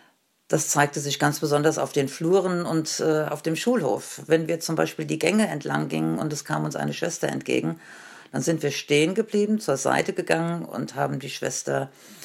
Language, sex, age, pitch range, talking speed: German, female, 50-69, 140-180 Hz, 195 wpm